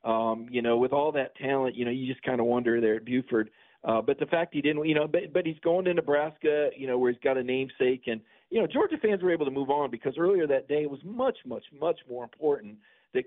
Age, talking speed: 40-59, 270 wpm